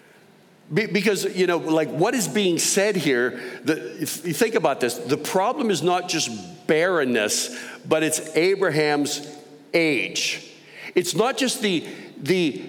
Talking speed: 140 wpm